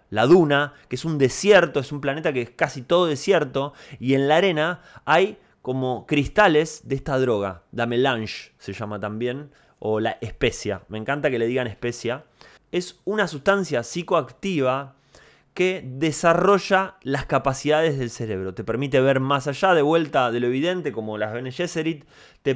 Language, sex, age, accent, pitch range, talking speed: Spanish, male, 20-39, Argentinian, 130-175 Hz, 170 wpm